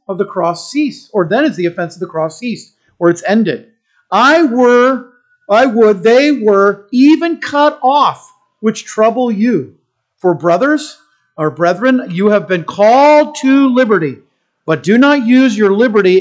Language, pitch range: English, 185-255 Hz